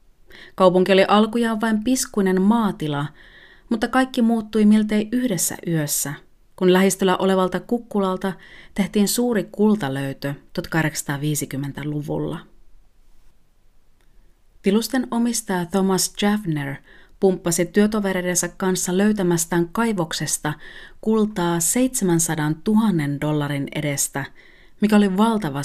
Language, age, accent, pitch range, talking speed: Finnish, 30-49, native, 155-215 Hz, 85 wpm